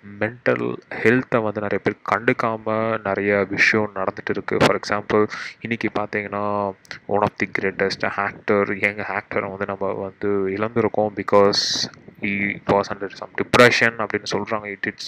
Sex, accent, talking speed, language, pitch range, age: male, native, 140 wpm, Tamil, 100-115 Hz, 20-39